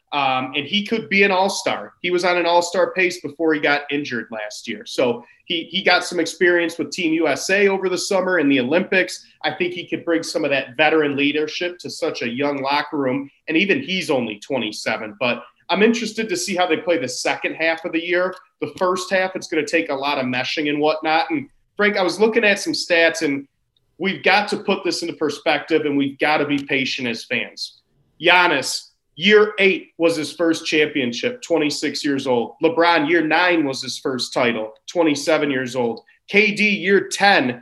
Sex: male